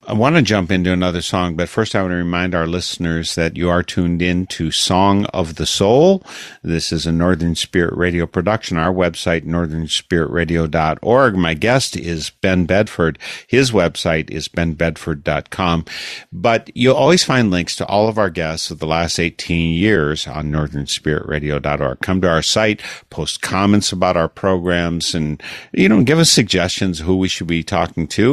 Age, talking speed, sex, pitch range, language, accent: 50-69, 175 wpm, male, 80-100 Hz, English, American